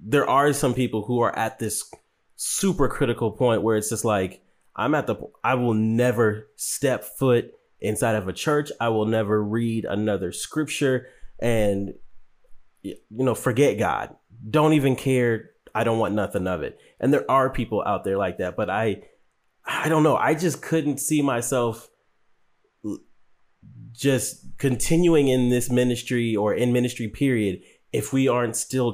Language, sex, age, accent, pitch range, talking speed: English, male, 30-49, American, 105-130 Hz, 160 wpm